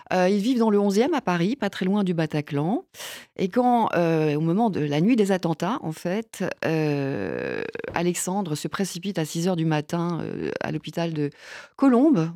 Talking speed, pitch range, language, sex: 185 wpm, 145-190 Hz, French, female